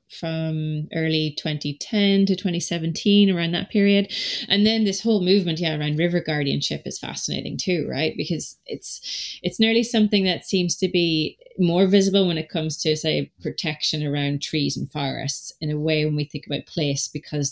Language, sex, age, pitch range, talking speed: English, female, 30-49, 140-175 Hz, 180 wpm